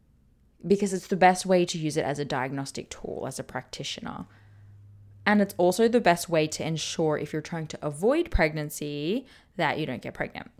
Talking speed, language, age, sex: 190 wpm, English, 20-39, female